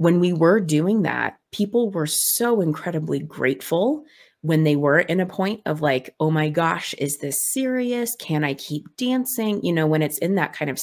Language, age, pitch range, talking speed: English, 30-49, 140-175 Hz, 200 wpm